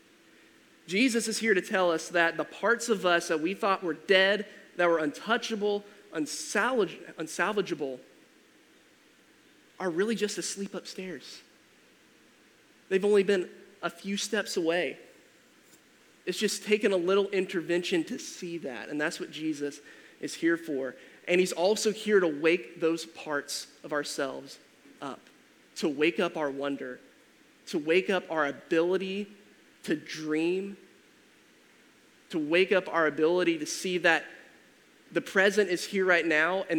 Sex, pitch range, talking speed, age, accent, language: male, 160-195 Hz, 140 wpm, 20-39, American, English